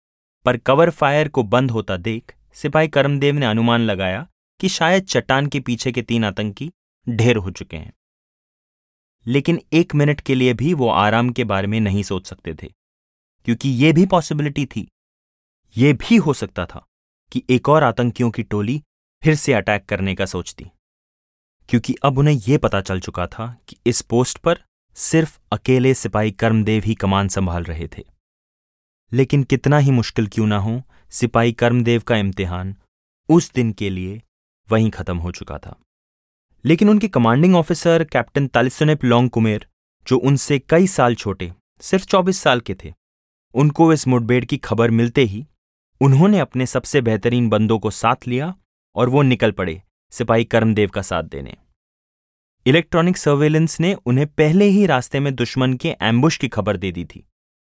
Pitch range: 100-140 Hz